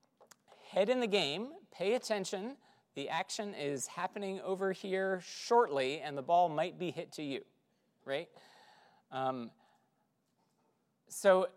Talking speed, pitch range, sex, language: 125 wpm, 130-200 Hz, male, English